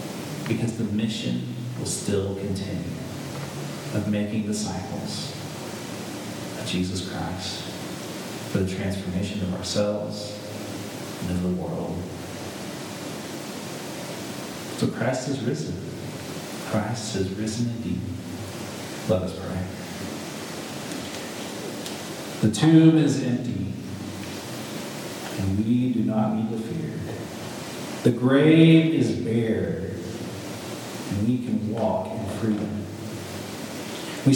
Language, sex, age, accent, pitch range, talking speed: English, male, 40-59, American, 100-140 Hz, 95 wpm